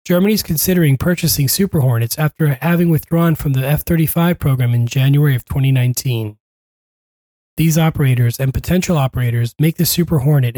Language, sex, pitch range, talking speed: English, male, 130-165 Hz, 145 wpm